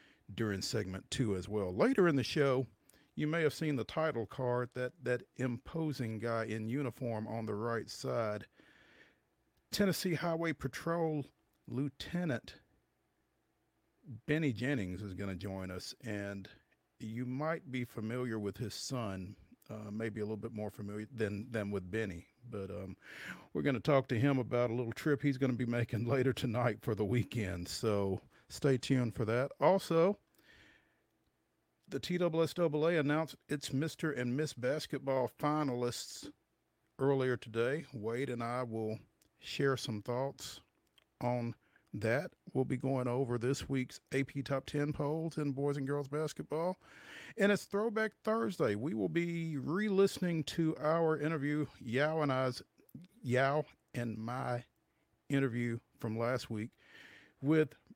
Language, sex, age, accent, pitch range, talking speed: English, male, 50-69, American, 115-150 Hz, 145 wpm